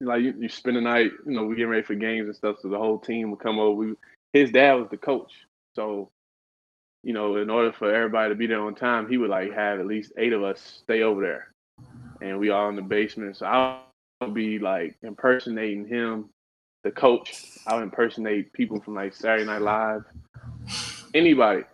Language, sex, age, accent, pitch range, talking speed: English, male, 20-39, American, 105-125 Hz, 205 wpm